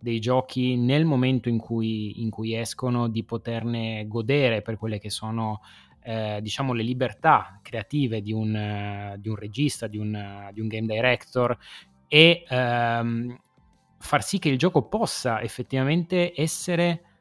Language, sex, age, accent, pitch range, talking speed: Italian, male, 20-39, native, 110-145 Hz, 135 wpm